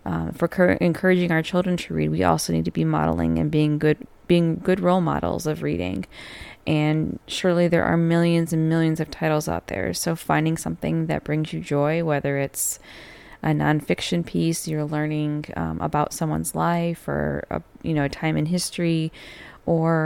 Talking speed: 180 wpm